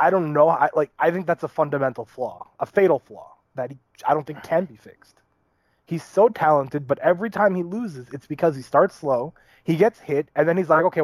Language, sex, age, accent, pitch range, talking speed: English, male, 20-39, American, 130-170 Hz, 225 wpm